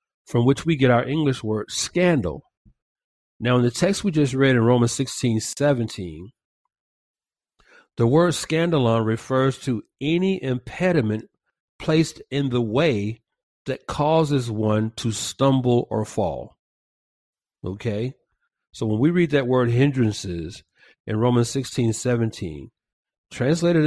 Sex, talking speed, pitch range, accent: male, 125 wpm, 105-135 Hz, American